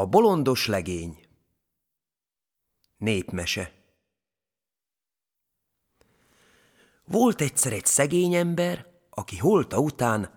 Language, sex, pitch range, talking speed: Hungarian, male, 110-175 Hz, 70 wpm